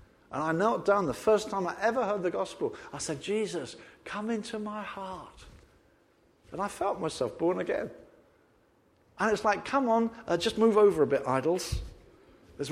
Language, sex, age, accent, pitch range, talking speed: English, male, 50-69, British, 130-195 Hz, 180 wpm